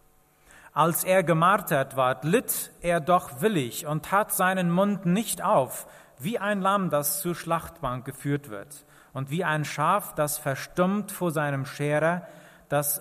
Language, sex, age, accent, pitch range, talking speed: German, male, 40-59, German, 145-180 Hz, 150 wpm